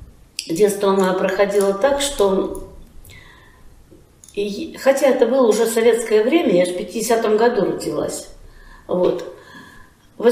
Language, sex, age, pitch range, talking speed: Russian, female, 40-59, 195-280 Hz, 120 wpm